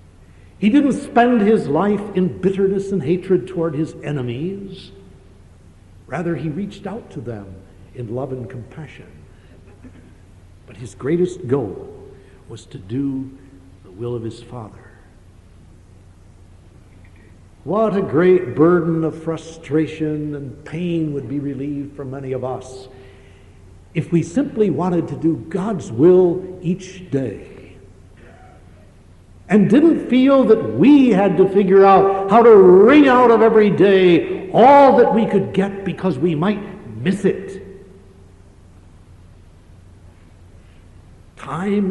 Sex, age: male, 60-79